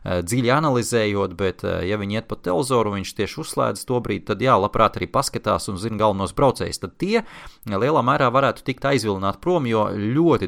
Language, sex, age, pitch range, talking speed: English, male, 30-49, 100-130 Hz, 180 wpm